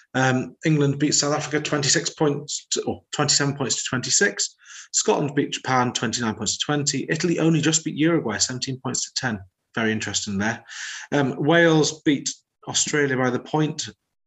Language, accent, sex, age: English, British, male, 30-49